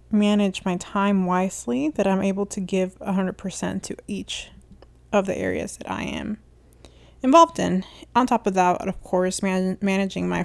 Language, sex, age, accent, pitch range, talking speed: English, female, 20-39, American, 180-210 Hz, 180 wpm